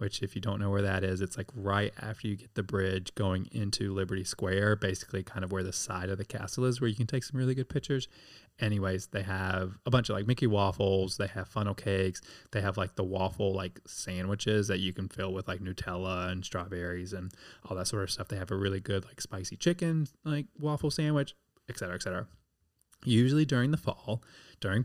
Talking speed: 225 wpm